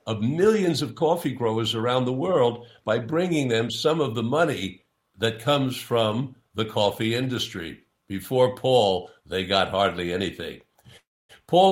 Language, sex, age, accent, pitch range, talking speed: English, male, 60-79, American, 110-140 Hz, 145 wpm